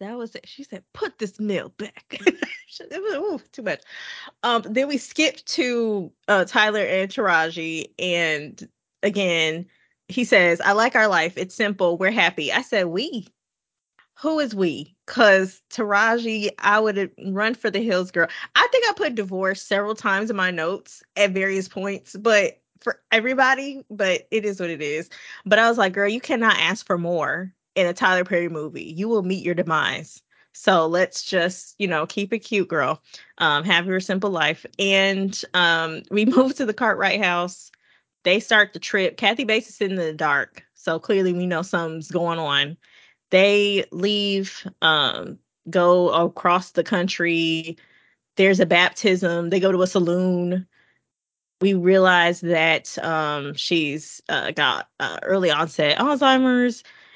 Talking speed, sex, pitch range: 165 wpm, female, 175-215 Hz